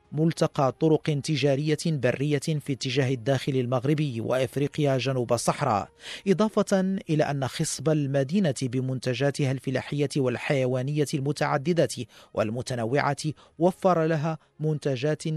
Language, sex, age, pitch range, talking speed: Arabic, male, 40-59, 130-155 Hz, 95 wpm